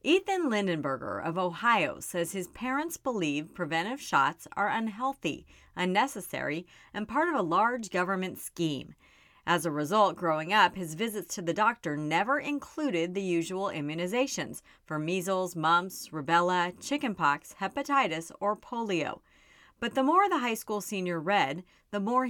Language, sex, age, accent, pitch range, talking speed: English, female, 40-59, American, 170-240 Hz, 145 wpm